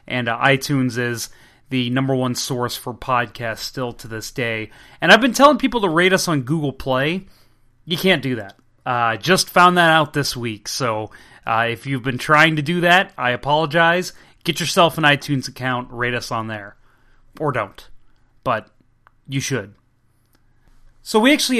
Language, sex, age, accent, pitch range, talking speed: English, male, 30-49, American, 125-155 Hz, 180 wpm